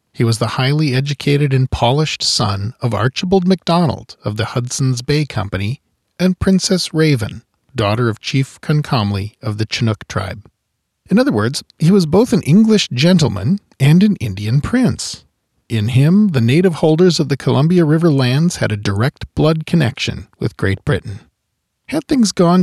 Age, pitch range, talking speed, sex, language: 40-59, 110-155 Hz, 160 wpm, male, English